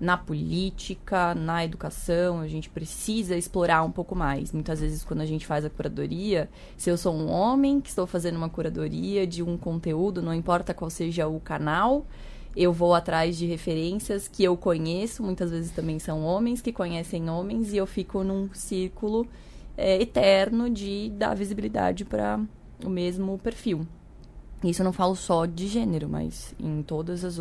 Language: Portuguese